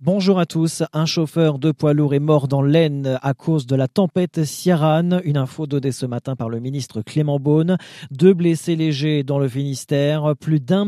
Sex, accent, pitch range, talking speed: male, French, 145-185 Hz, 200 wpm